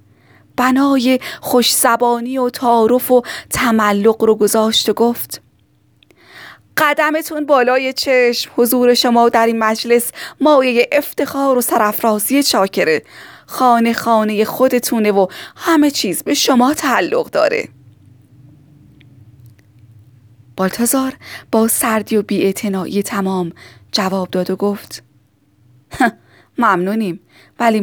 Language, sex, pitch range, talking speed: Persian, female, 175-240 Hz, 95 wpm